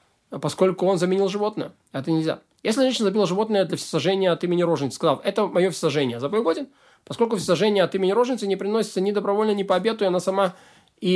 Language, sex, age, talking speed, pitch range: Russian, male, 20-39, 200 wpm, 160-195 Hz